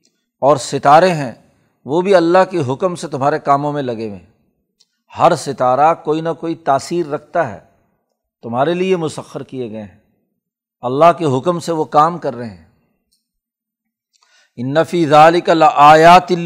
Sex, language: male, Urdu